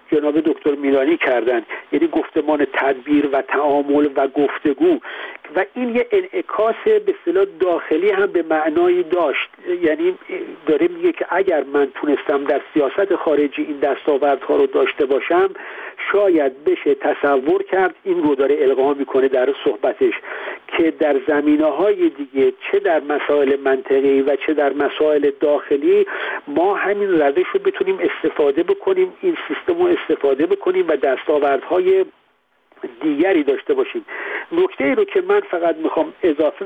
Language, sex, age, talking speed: Persian, male, 50-69, 140 wpm